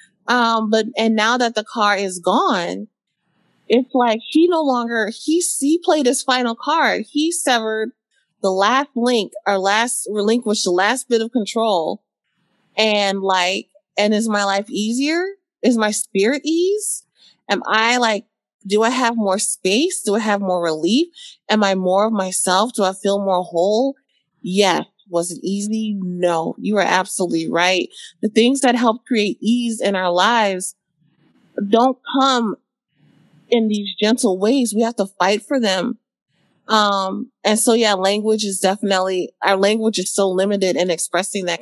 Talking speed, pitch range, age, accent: 160 wpm, 195-235 Hz, 30-49, American